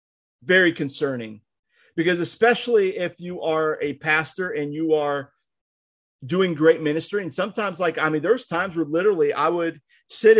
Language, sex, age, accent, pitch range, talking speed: English, male, 40-59, American, 140-185 Hz, 155 wpm